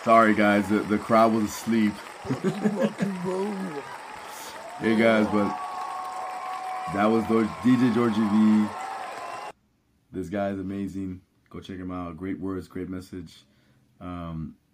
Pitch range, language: 85-105 Hz, English